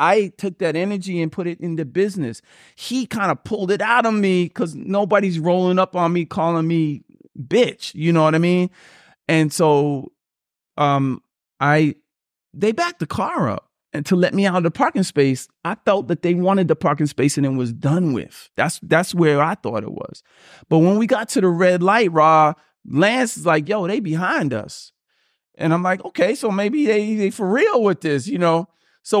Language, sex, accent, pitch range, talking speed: English, male, American, 135-185 Hz, 210 wpm